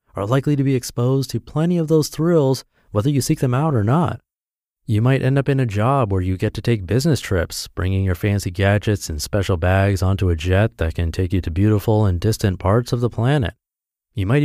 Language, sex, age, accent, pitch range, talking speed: English, male, 30-49, American, 95-125 Hz, 230 wpm